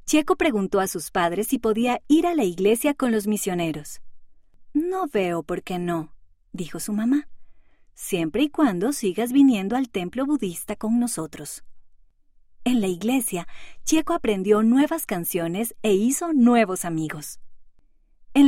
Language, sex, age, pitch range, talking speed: Spanish, female, 30-49, 170-265 Hz, 145 wpm